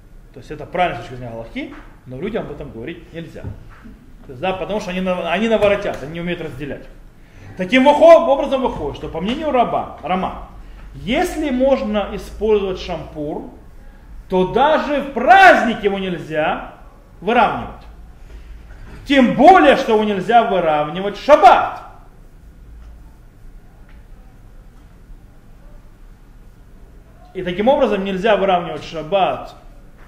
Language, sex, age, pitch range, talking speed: Russian, male, 30-49, 155-215 Hz, 105 wpm